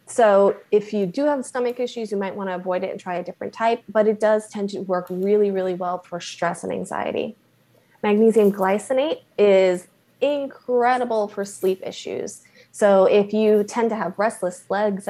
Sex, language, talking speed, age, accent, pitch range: female, English, 180 wpm, 20-39, American, 190-235 Hz